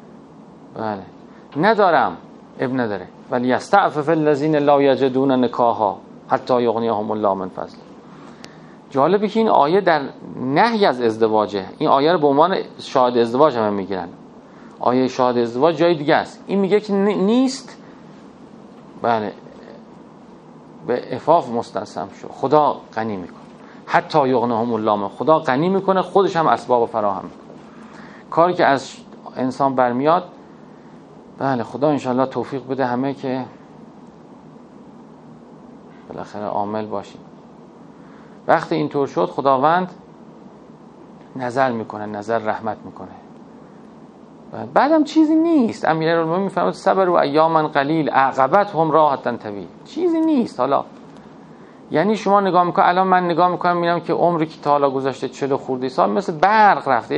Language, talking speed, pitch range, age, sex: Persian, 130 wpm, 125-195 Hz, 40-59, male